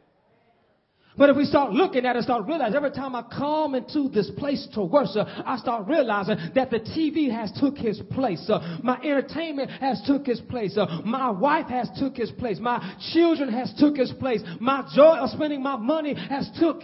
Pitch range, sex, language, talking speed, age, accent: 170-275 Hz, male, English, 200 wpm, 30-49, American